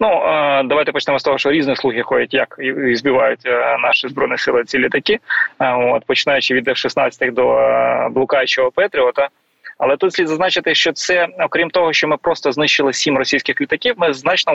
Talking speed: 170 wpm